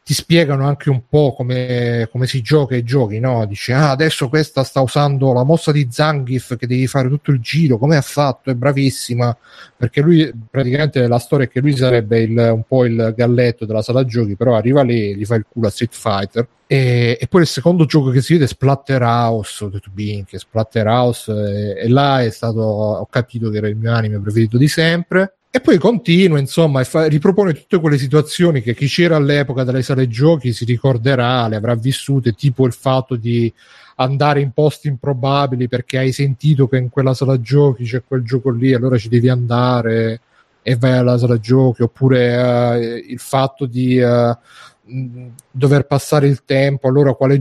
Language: Italian